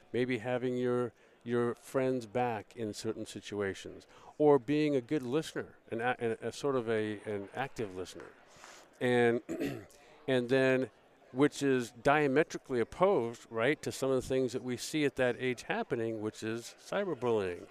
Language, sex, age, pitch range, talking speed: English, male, 50-69, 115-145 Hz, 155 wpm